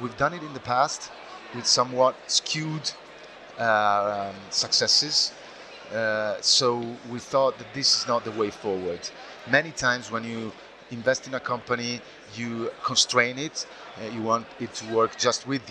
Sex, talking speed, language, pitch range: male, 160 wpm, English, 115-140 Hz